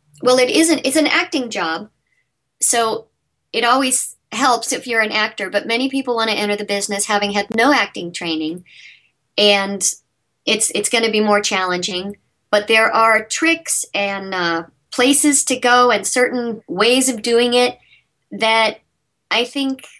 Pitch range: 200-255 Hz